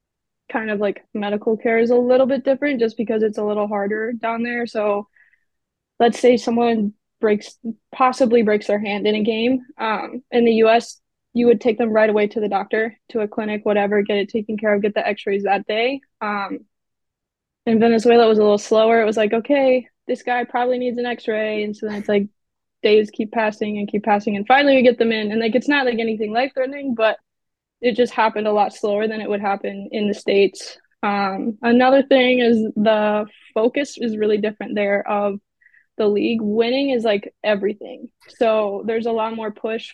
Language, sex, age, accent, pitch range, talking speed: English, female, 20-39, American, 210-240 Hz, 205 wpm